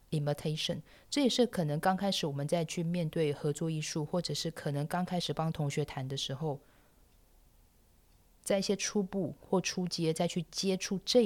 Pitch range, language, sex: 150-185 Hz, Chinese, female